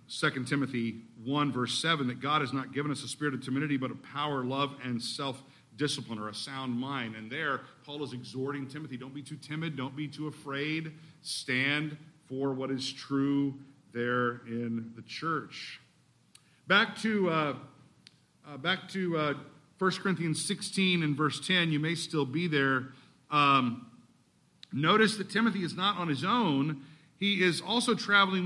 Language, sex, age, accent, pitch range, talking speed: English, male, 50-69, American, 135-185 Hz, 165 wpm